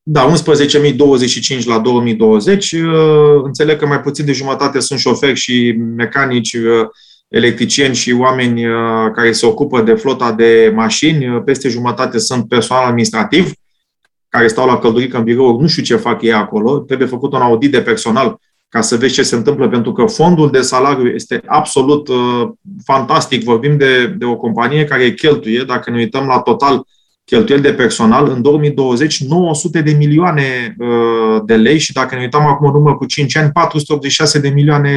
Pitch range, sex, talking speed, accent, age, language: 120-145 Hz, male, 160 wpm, native, 20-39, Romanian